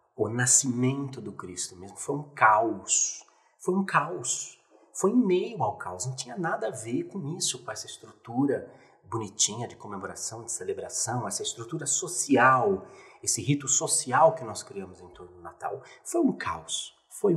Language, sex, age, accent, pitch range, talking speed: Portuguese, male, 30-49, Brazilian, 110-180 Hz, 165 wpm